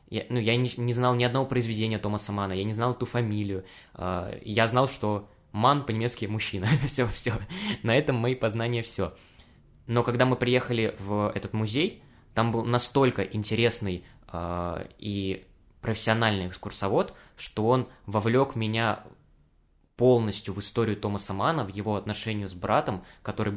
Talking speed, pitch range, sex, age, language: 150 wpm, 100-120 Hz, male, 20-39, Russian